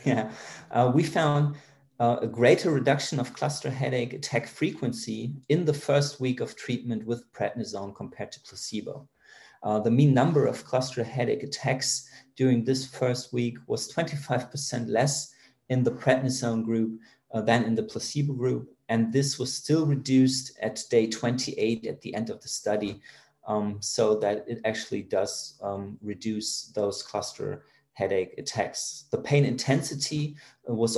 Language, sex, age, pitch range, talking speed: English, male, 30-49, 115-135 Hz, 155 wpm